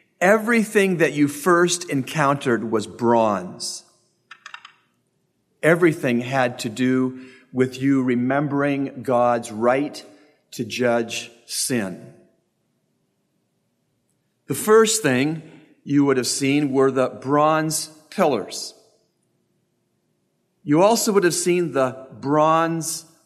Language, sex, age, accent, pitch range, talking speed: English, male, 40-59, American, 130-165 Hz, 95 wpm